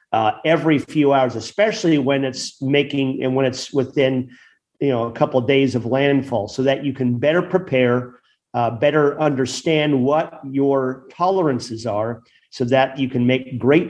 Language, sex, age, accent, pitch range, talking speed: English, male, 40-59, American, 125-150 Hz, 170 wpm